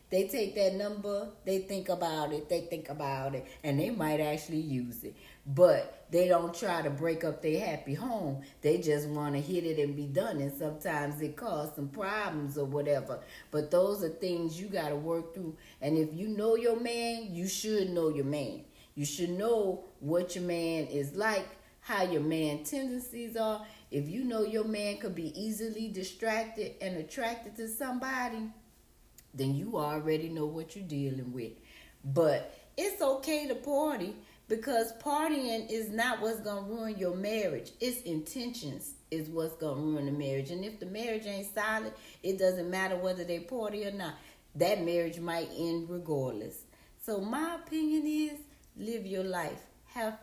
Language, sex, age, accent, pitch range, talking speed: English, female, 40-59, American, 150-220 Hz, 180 wpm